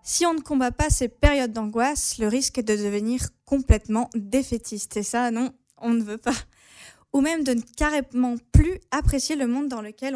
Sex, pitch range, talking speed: female, 215-260 Hz, 195 wpm